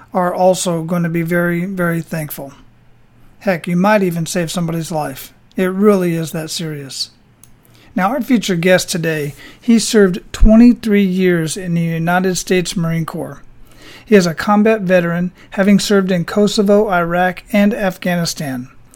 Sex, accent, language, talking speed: male, American, English, 150 wpm